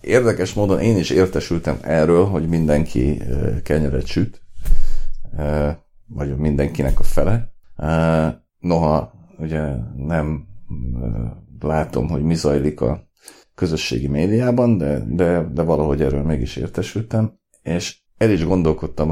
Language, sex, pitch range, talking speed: Hungarian, male, 75-95 Hz, 110 wpm